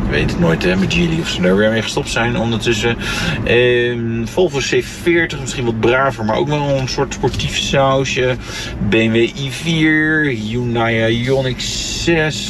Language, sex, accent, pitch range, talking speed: Dutch, male, Dutch, 110-145 Hz, 160 wpm